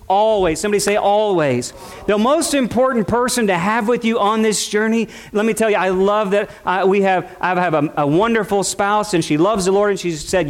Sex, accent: male, American